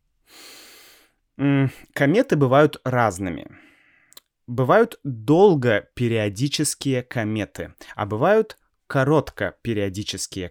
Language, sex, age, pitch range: Russian, male, 20-39, 100-140 Hz